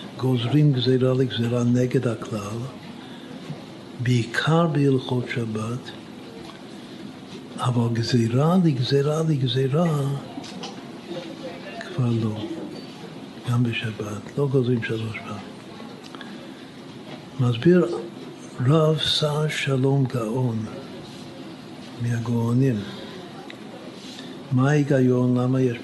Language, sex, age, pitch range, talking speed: Hebrew, male, 60-79, 120-145 Hz, 70 wpm